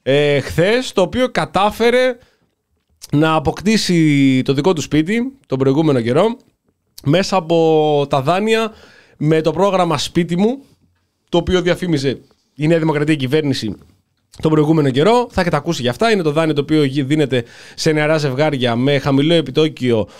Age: 20-39